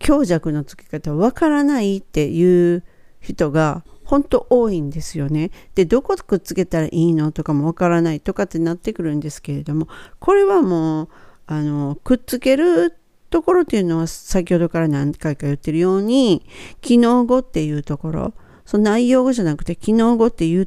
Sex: female